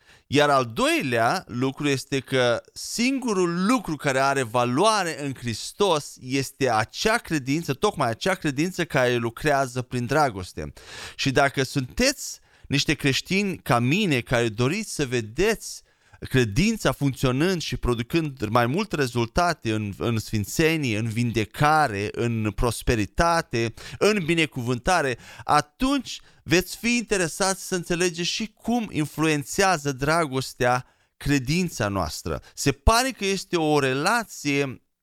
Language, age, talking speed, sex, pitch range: Romanian, 30-49, 115 wpm, male, 125-175 Hz